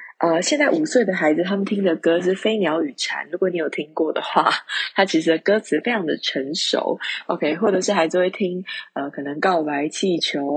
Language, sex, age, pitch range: Chinese, female, 20-39, 175-250 Hz